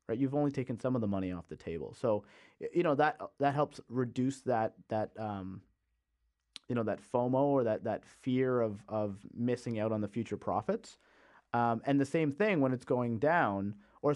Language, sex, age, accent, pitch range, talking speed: English, male, 30-49, American, 105-135 Hz, 195 wpm